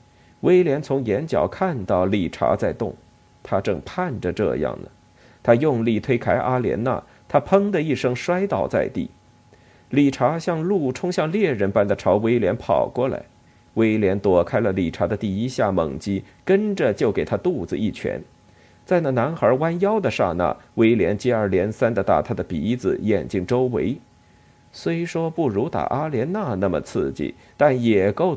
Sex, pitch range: male, 105-155 Hz